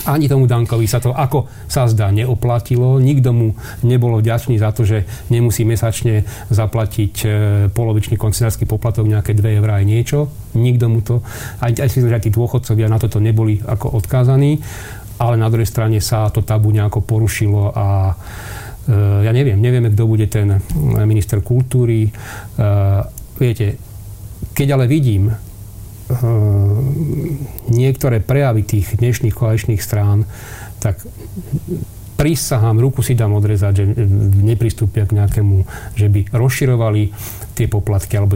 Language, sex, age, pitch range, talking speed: Slovak, male, 40-59, 105-120 Hz, 135 wpm